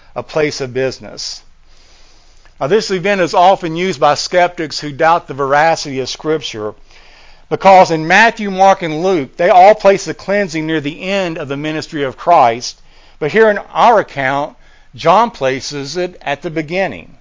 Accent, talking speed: American, 165 wpm